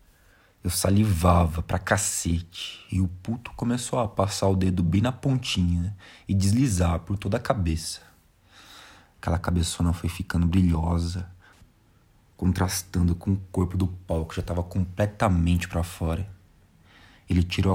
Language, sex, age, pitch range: Portuguese, male, 20-39, 90-100 Hz